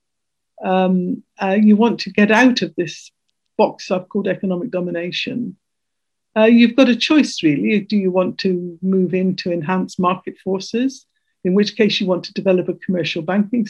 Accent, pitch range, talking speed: British, 185-225 Hz, 175 wpm